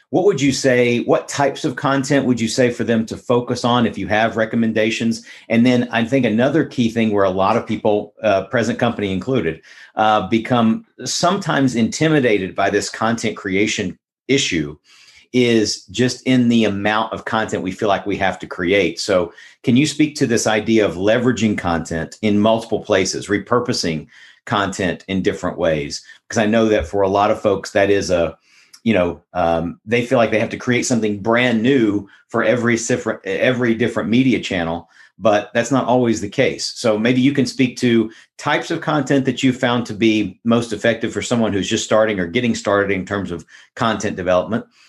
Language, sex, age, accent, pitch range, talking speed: English, male, 50-69, American, 105-125 Hz, 190 wpm